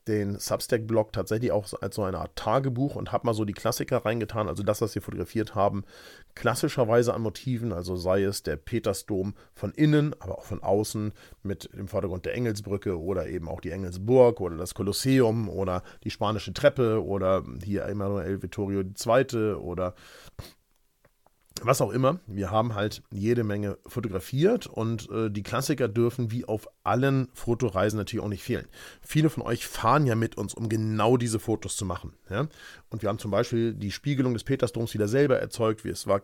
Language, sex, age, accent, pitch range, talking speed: German, male, 40-59, German, 100-125 Hz, 180 wpm